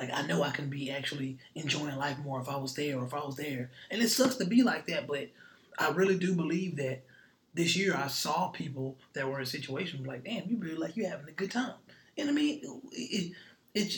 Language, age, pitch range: English, 20-39, 140-190 Hz